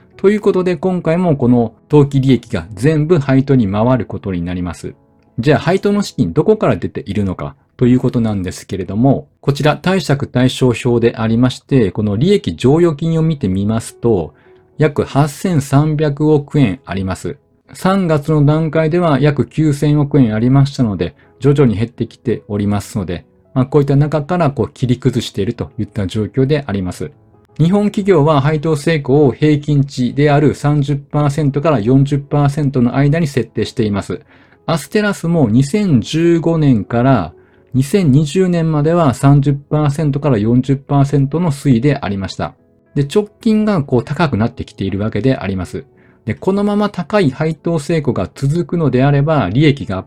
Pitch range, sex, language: 115-155 Hz, male, Japanese